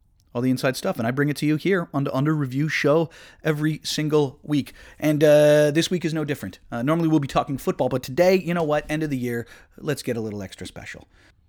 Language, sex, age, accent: English, male, 30-49, American